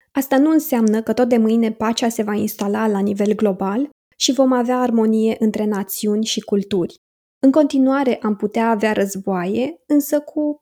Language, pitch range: Romanian, 210-265 Hz